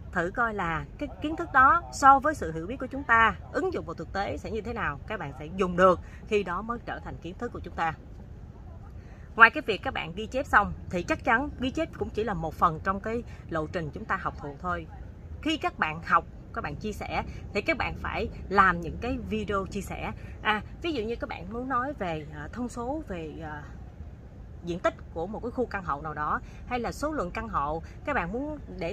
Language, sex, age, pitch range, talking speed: Vietnamese, female, 20-39, 180-270 Hz, 240 wpm